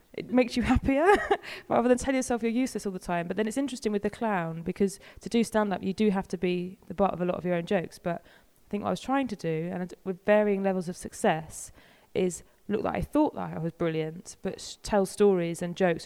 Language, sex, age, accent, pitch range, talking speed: English, female, 20-39, British, 170-220 Hz, 260 wpm